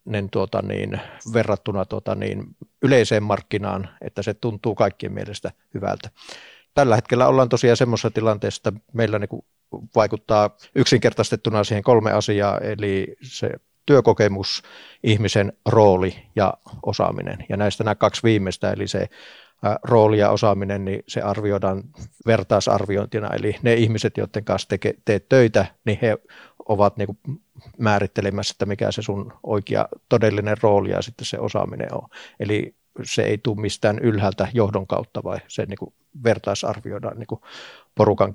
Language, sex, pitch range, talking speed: Finnish, male, 100-115 Hz, 135 wpm